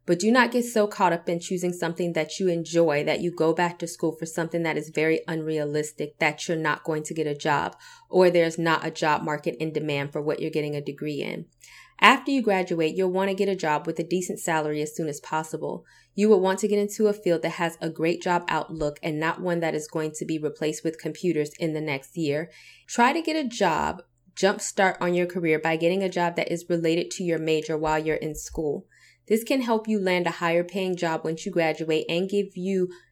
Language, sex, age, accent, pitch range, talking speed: English, female, 20-39, American, 155-185 Hz, 240 wpm